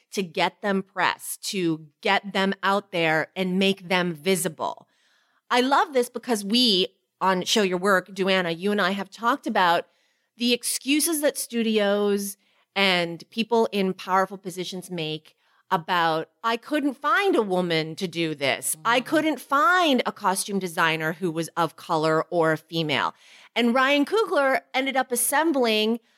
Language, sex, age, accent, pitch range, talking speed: English, female, 30-49, American, 185-245 Hz, 155 wpm